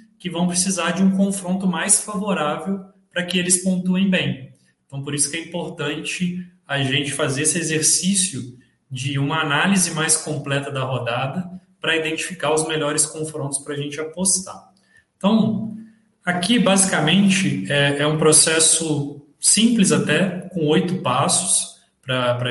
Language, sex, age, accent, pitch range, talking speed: Portuguese, male, 20-39, Brazilian, 130-180 Hz, 140 wpm